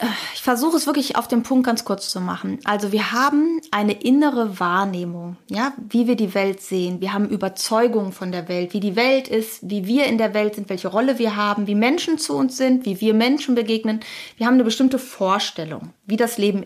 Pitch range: 195-250 Hz